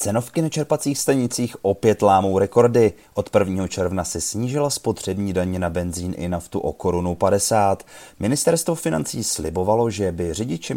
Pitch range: 90-125 Hz